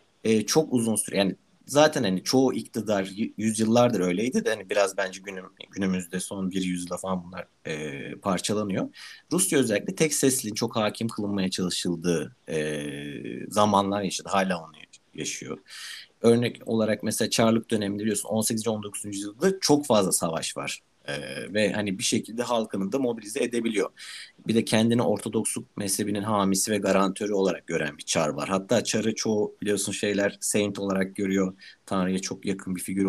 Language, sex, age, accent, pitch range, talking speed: Turkish, male, 50-69, native, 95-120 Hz, 155 wpm